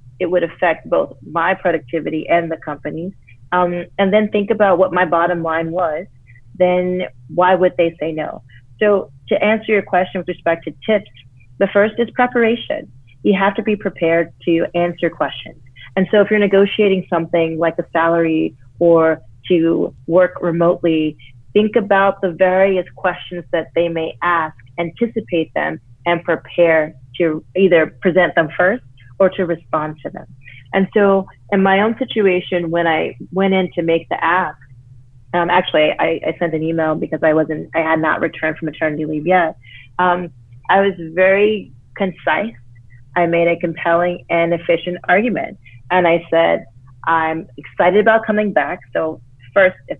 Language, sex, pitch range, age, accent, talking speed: English, female, 155-185 Hz, 30-49, American, 165 wpm